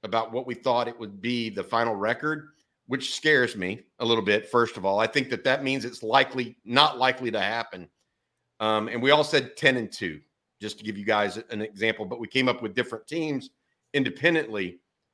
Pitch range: 110-135 Hz